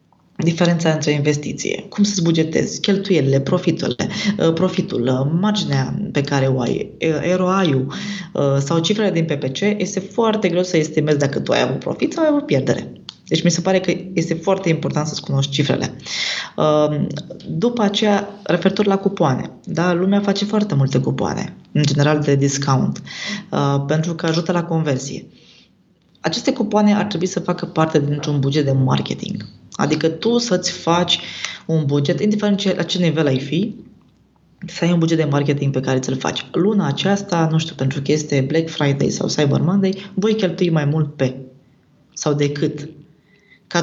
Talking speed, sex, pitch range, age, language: 160 wpm, female, 150-195 Hz, 20-39, Romanian